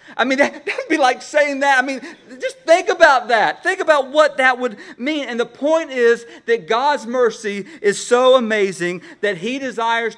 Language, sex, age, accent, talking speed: English, male, 40-59, American, 195 wpm